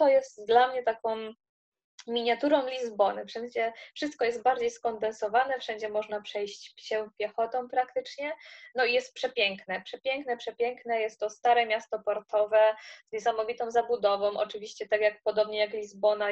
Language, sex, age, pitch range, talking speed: Polish, female, 20-39, 210-235 Hz, 140 wpm